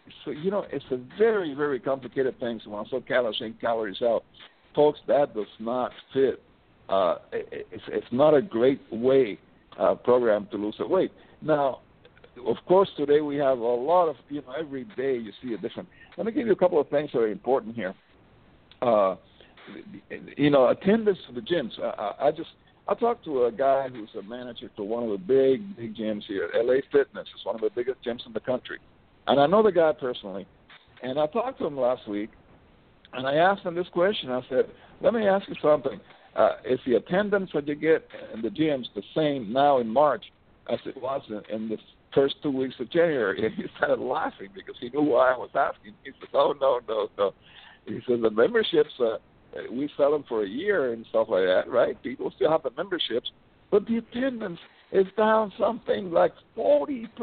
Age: 60-79